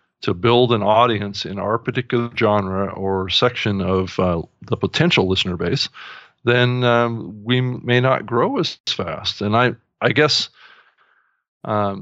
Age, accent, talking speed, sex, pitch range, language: 40-59, American, 150 wpm, male, 100-115 Hz, English